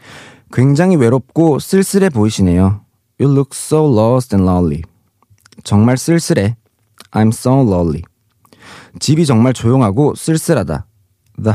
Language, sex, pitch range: Korean, male, 105-145 Hz